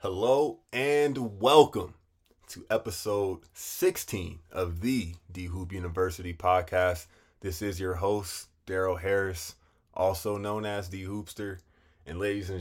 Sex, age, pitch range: male, 20-39, 85-95 Hz